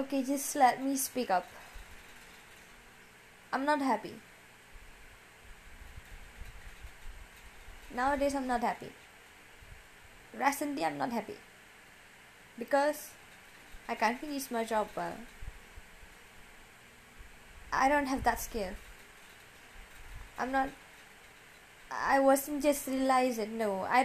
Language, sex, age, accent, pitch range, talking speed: Indonesian, female, 20-39, Indian, 220-285 Hz, 95 wpm